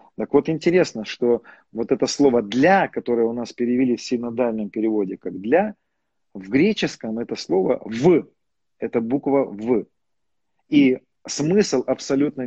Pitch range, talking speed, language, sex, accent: 120-160 Hz, 135 wpm, Russian, male, native